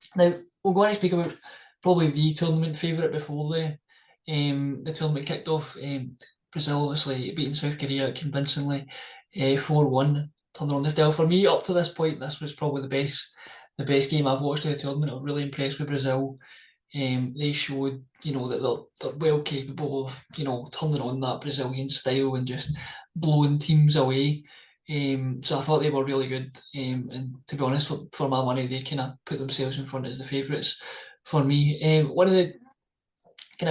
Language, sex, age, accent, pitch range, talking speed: English, male, 20-39, British, 135-155 Hz, 205 wpm